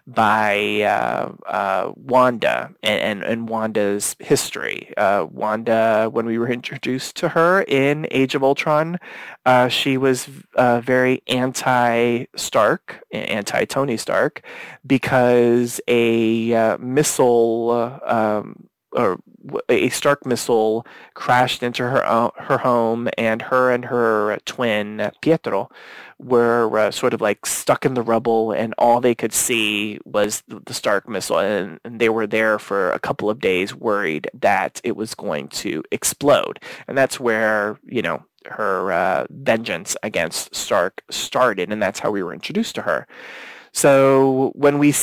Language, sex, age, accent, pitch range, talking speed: English, male, 30-49, American, 115-135 Hz, 135 wpm